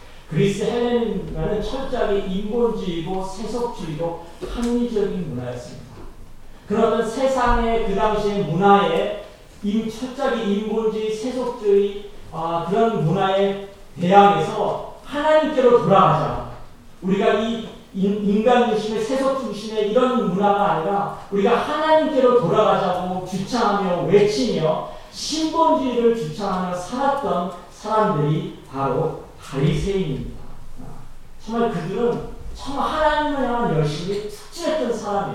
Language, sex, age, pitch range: Korean, male, 40-59, 180-230 Hz